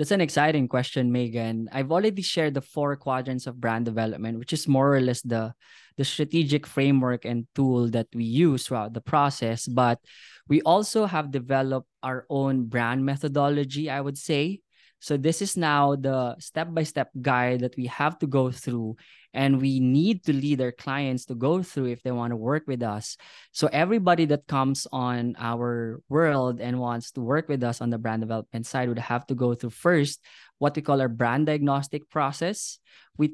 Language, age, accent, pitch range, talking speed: English, 20-39, Filipino, 125-150 Hz, 190 wpm